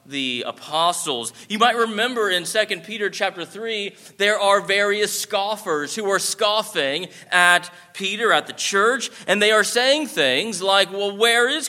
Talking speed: 160 wpm